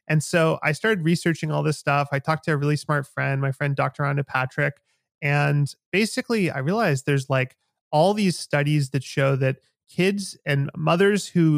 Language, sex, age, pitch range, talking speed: English, male, 30-49, 140-165 Hz, 185 wpm